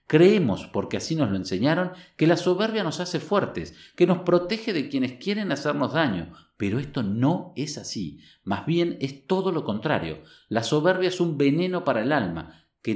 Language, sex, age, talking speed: Spanish, male, 50-69, 185 wpm